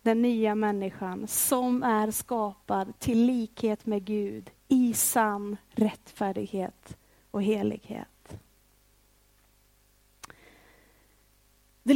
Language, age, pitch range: Swedish, 30-49, 220-290 Hz